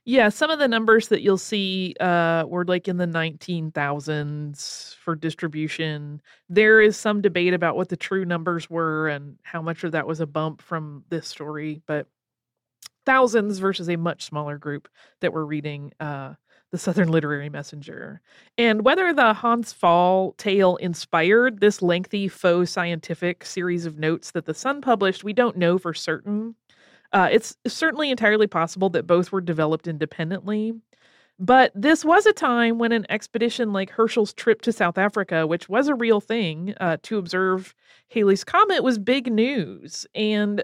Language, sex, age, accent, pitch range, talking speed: English, female, 30-49, American, 165-225 Hz, 165 wpm